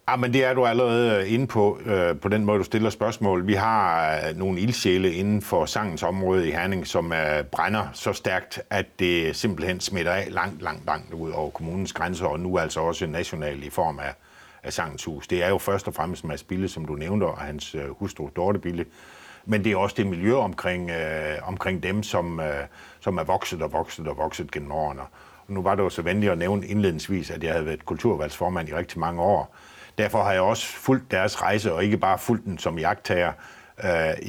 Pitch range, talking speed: 85-105 Hz, 215 wpm